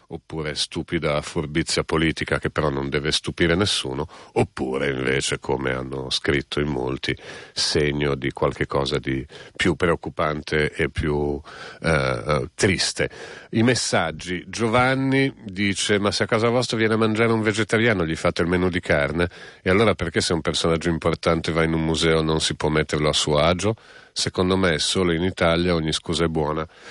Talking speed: 165 wpm